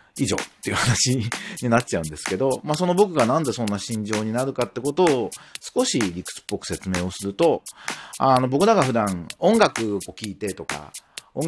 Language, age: Japanese, 40-59